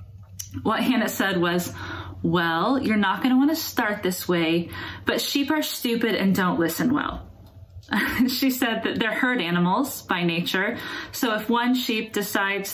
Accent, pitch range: American, 180-220 Hz